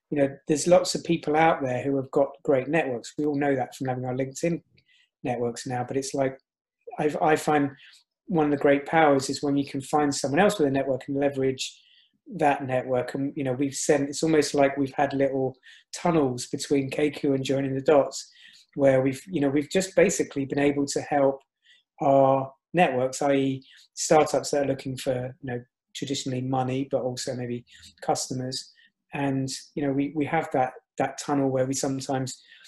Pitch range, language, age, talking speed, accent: 135-150 Hz, English, 30-49, 195 wpm, British